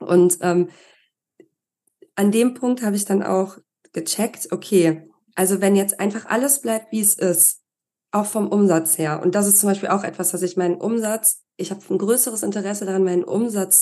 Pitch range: 180-225 Hz